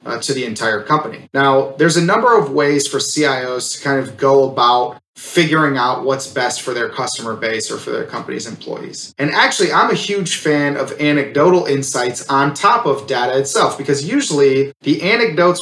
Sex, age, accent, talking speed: male, 30-49, American, 190 wpm